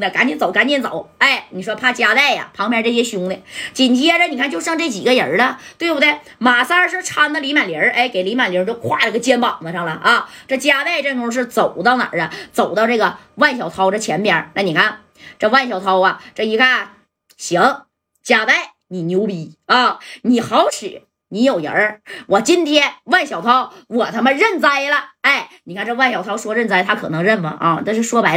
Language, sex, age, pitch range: Chinese, female, 20-39, 200-270 Hz